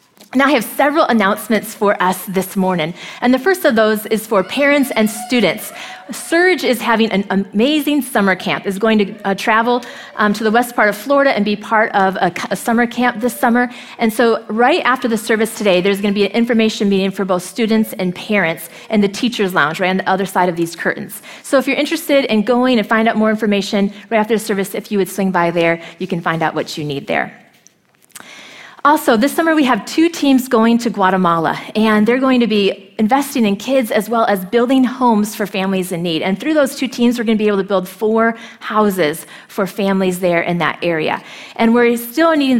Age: 30-49